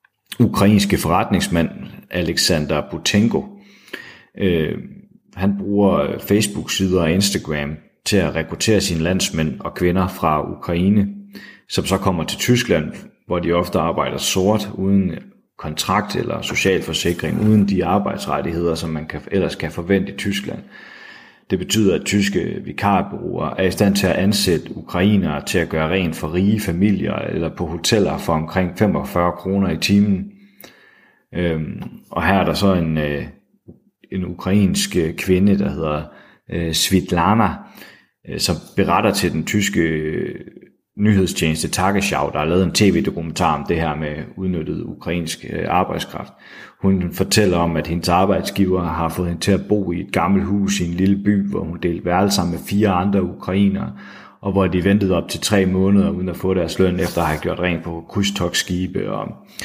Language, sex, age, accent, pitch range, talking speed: Danish, male, 30-49, native, 85-100 Hz, 150 wpm